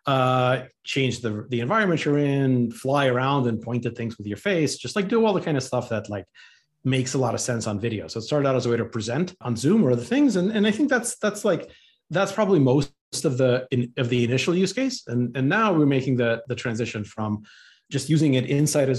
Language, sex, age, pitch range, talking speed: English, male, 30-49, 115-145 Hz, 250 wpm